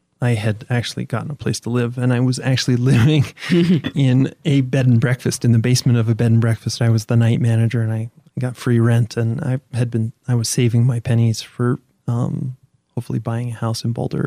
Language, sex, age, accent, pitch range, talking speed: English, male, 30-49, American, 115-130 Hz, 225 wpm